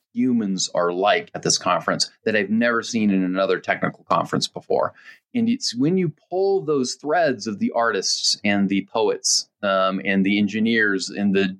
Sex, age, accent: male, 30-49, American